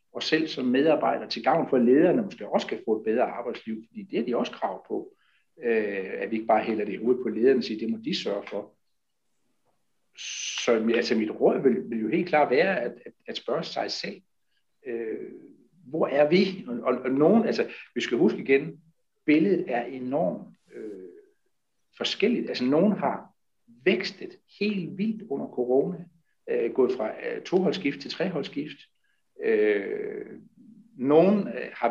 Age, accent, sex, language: 60-79, native, male, Danish